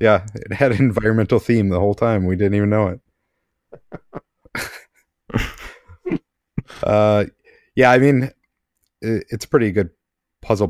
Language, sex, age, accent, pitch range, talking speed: English, male, 30-49, American, 90-105 Hz, 130 wpm